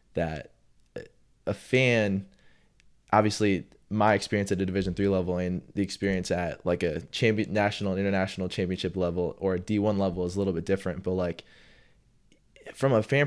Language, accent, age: English, American, 20-39